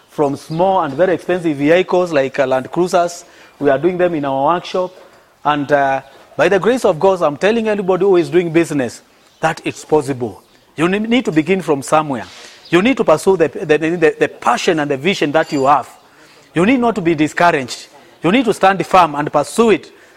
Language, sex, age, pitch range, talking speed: English, male, 40-59, 155-195 Hz, 205 wpm